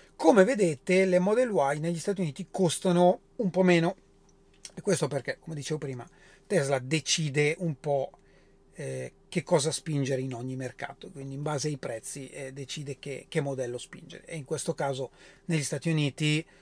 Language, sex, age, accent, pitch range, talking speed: Italian, male, 40-59, native, 145-190 Hz, 170 wpm